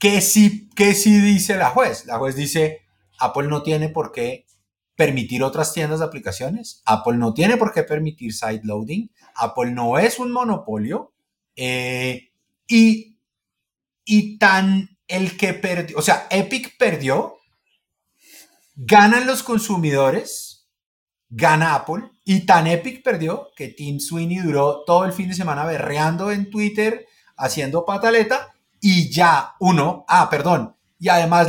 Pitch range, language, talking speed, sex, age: 135-210 Hz, Spanish, 140 wpm, male, 30-49